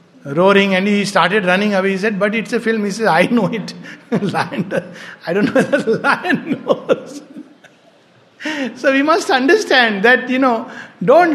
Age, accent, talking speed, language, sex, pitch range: 60-79, Indian, 180 wpm, English, male, 165-215 Hz